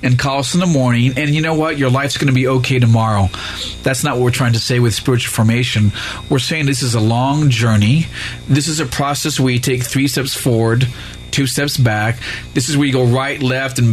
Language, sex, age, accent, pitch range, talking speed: English, male, 40-59, American, 115-145 Hz, 235 wpm